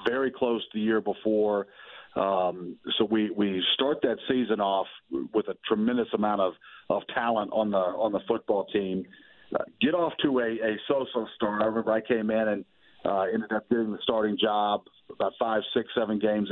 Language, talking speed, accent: English, 195 wpm, American